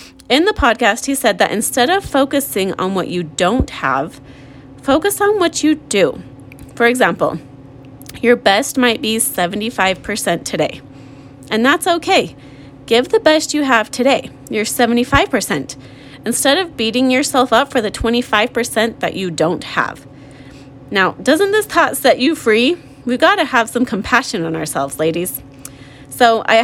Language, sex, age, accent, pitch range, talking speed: English, female, 30-49, American, 160-260 Hz, 155 wpm